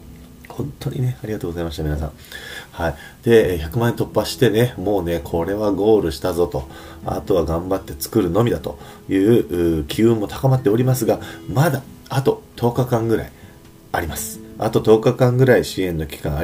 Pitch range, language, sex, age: 80-120 Hz, Japanese, male, 40-59